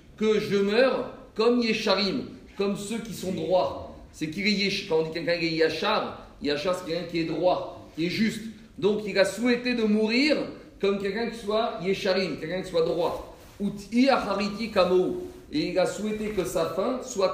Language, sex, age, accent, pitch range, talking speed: French, male, 40-59, French, 165-220 Hz, 185 wpm